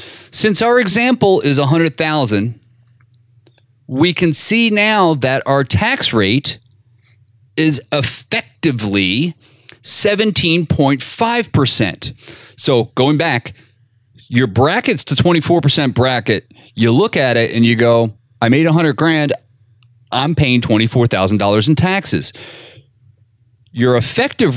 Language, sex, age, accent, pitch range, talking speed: English, male, 40-59, American, 120-170 Hz, 105 wpm